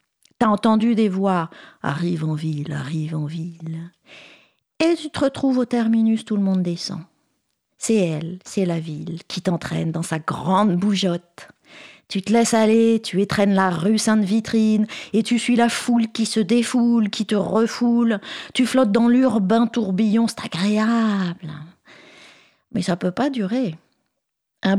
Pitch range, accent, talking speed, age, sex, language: 195-240 Hz, French, 155 wpm, 40-59, female, French